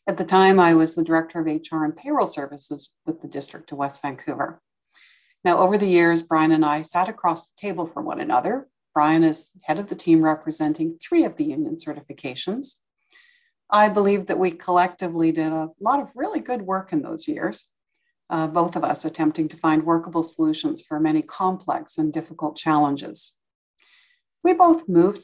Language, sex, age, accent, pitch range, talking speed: English, female, 60-79, American, 160-260 Hz, 185 wpm